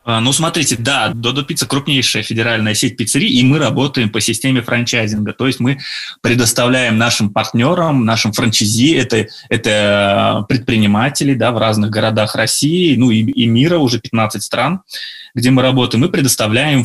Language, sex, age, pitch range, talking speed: Russian, male, 20-39, 110-125 Hz, 155 wpm